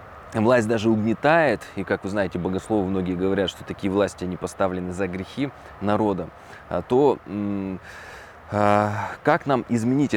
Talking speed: 125 wpm